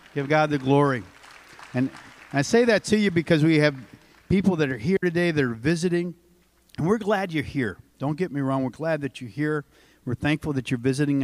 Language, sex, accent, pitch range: English, male, American, 130-170 Hz